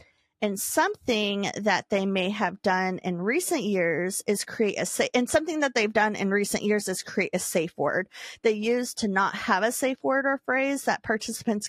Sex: female